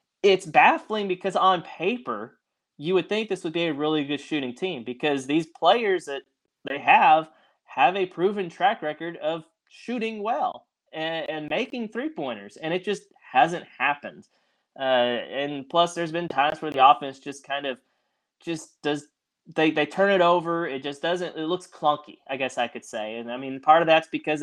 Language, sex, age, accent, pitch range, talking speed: English, male, 20-39, American, 130-160 Hz, 185 wpm